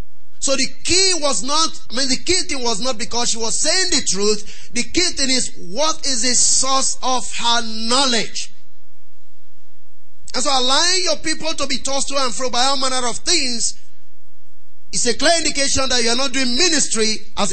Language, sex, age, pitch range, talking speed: English, male, 30-49, 220-280 Hz, 190 wpm